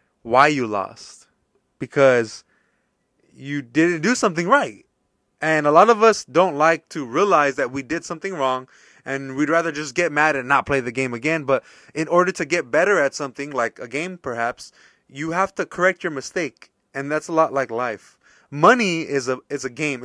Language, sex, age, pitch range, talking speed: English, male, 20-39, 140-190 Hz, 195 wpm